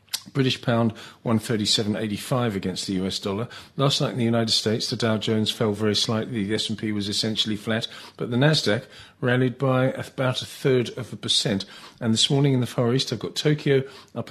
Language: English